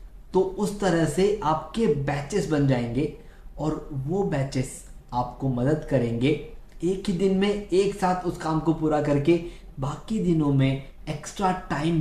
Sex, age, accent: male, 20-39, native